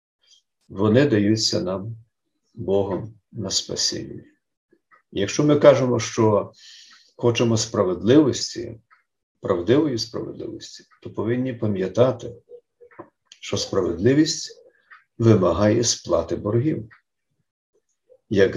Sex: male